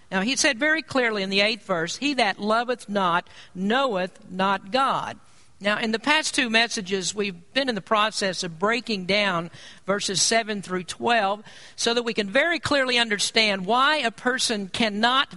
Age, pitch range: 50-69, 195-250 Hz